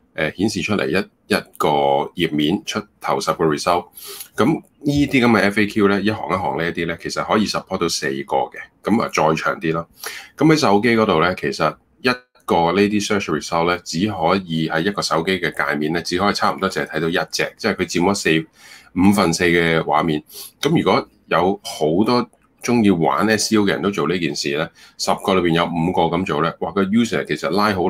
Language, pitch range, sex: Chinese, 80-105 Hz, male